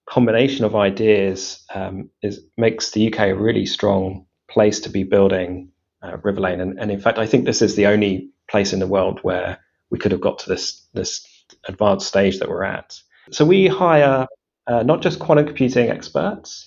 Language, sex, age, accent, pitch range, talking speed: English, male, 30-49, British, 100-130 Hz, 190 wpm